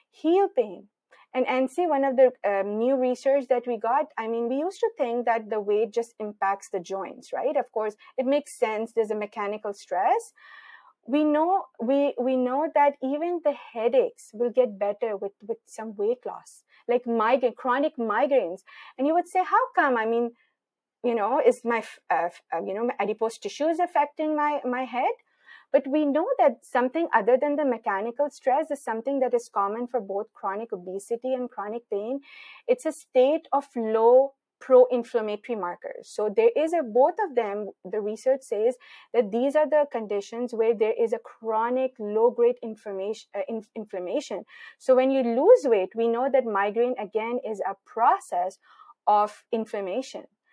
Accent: Indian